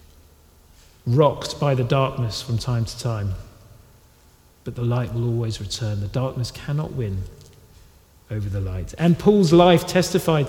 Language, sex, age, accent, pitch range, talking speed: English, male, 40-59, British, 110-160 Hz, 145 wpm